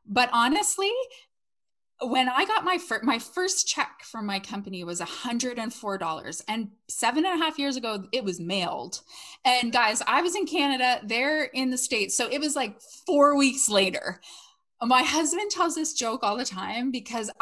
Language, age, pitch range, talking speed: English, 20-39, 220-290 Hz, 175 wpm